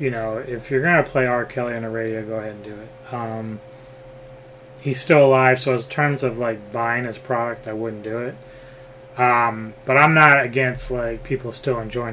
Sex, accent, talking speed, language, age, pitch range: male, American, 205 wpm, English, 30-49, 115-130 Hz